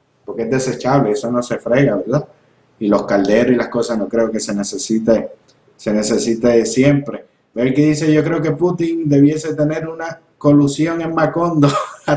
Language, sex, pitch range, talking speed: Spanish, male, 130-150 Hz, 175 wpm